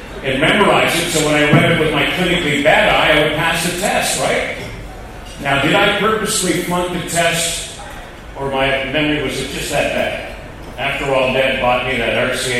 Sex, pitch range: male, 125-155 Hz